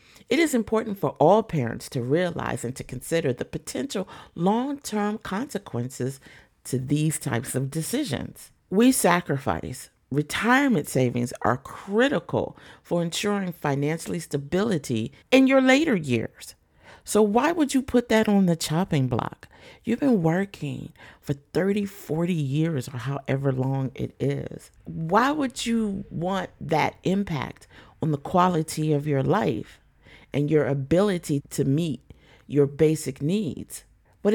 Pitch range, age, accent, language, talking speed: 135-200 Hz, 50-69, American, English, 135 wpm